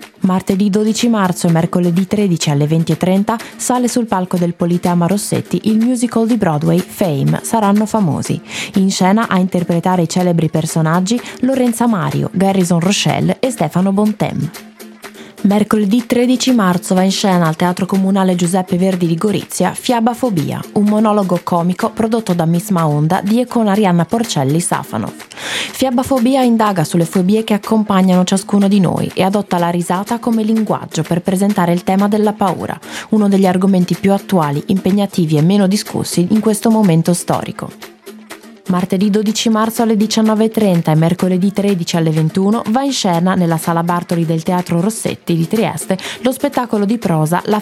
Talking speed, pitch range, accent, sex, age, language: 150 wpm, 175-220 Hz, native, female, 20-39, Italian